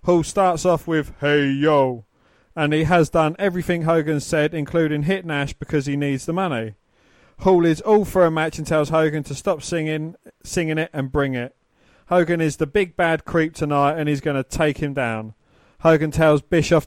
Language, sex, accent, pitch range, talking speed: English, male, British, 145-165 Hz, 195 wpm